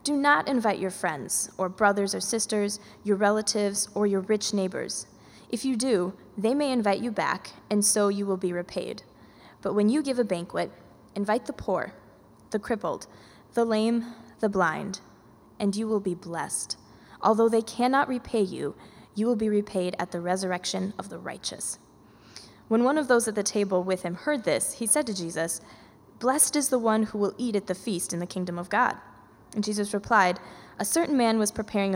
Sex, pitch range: female, 195-240 Hz